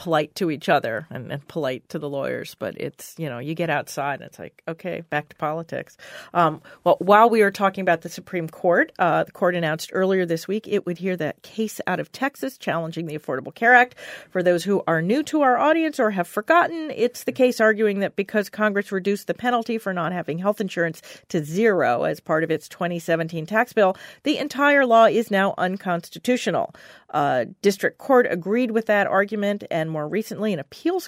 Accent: American